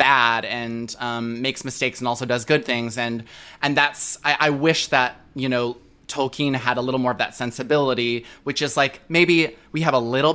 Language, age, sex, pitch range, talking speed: English, 20-39, male, 120-150 Hz, 205 wpm